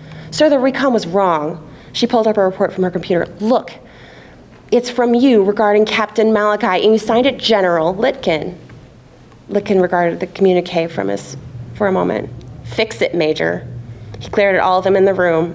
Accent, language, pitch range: American, English, 135-200 Hz